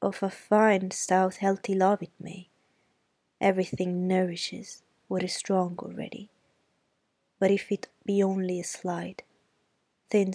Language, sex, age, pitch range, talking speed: Italian, female, 20-39, 180-205 Hz, 130 wpm